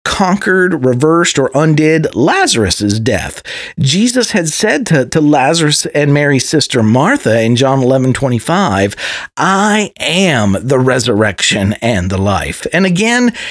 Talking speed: 140 wpm